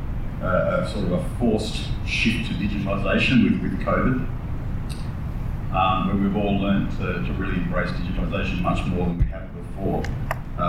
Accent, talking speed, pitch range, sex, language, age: Australian, 165 wpm, 85-100 Hz, male, English, 40-59